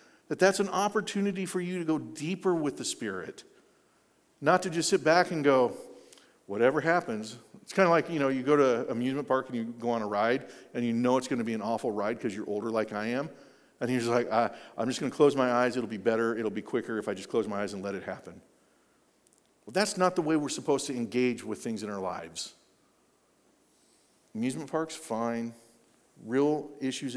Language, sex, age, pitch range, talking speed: English, male, 50-69, 115-170 Hz, 225 wpm